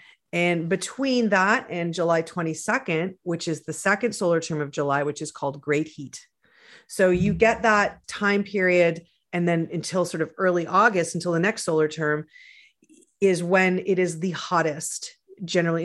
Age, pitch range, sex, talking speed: 40-59, 160-205 Hz, female, 165 wpm